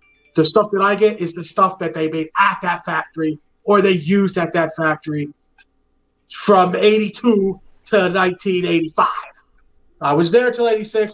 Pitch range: 155-215 Hz